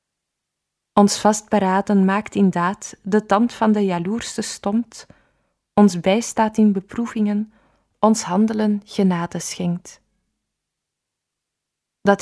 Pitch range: 190-215 Hz